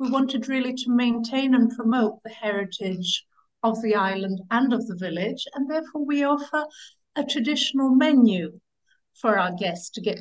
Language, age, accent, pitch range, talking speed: Greek, 60-79, British, 200-265 Hz, 165 wpm